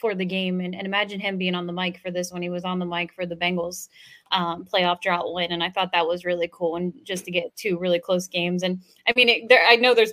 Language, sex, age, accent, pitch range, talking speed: English, female, 20-39, American, 180-240 Hz, 290 wpm